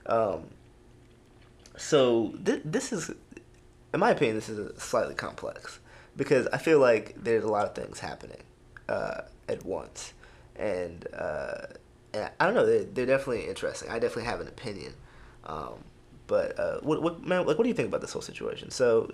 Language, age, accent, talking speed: English, 20-39, American, 165 wpm